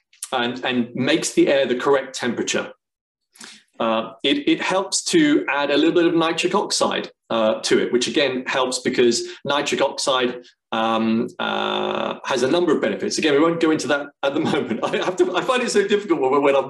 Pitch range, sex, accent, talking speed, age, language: 120-185 Hz, male, British, 200 wpm, 30-49, English